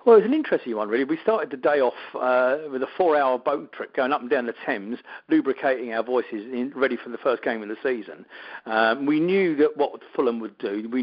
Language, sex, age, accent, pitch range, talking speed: English, male, 50-69, British, 115-155 Hz, 250 wpm